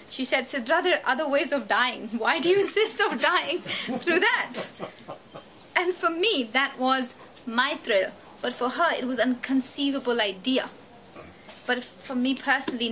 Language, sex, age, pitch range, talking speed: English, female, 30-49, 235-285 Hz, 165 wpm